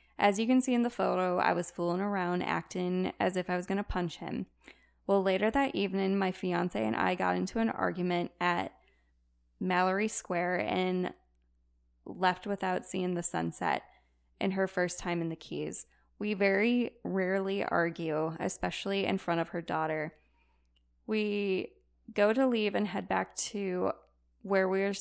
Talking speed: 165 wpm